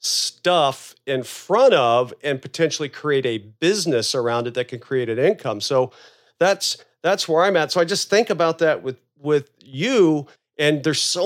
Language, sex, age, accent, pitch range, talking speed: English, male, 40-59, American, 130-160 Hz, 180 wpm